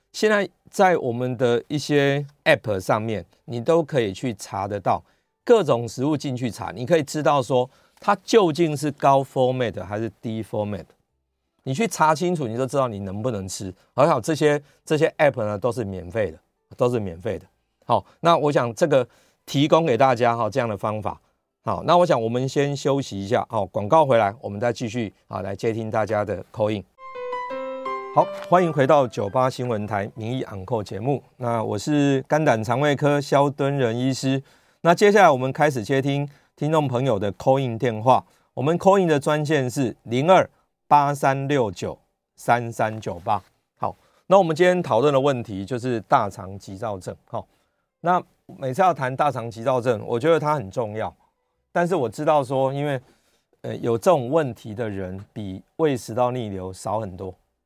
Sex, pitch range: male, 110-150 Hz